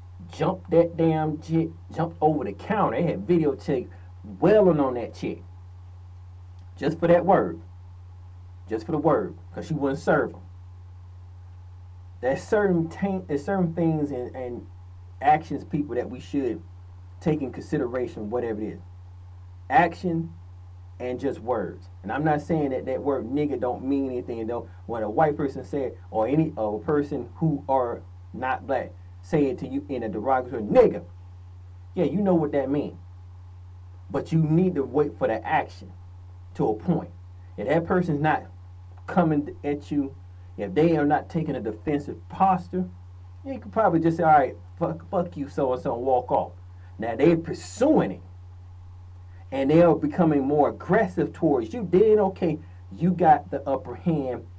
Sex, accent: male, American